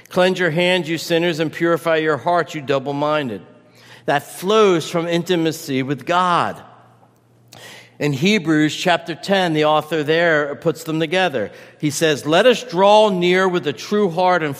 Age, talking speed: 50-69, 155 wpm